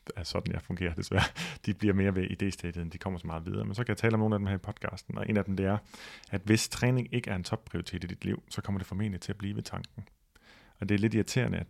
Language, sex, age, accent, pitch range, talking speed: Danish, male, 30-49, native, 95-105 Hz, 295 wpm